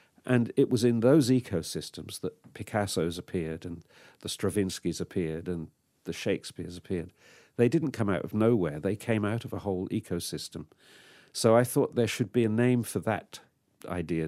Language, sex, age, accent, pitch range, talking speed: English, male, 50-69, British, 90-115 Hz, 170 wpm